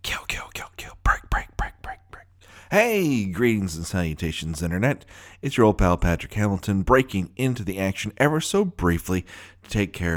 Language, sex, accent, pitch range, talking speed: English, male, American, 90-125 Hz, 175 wpm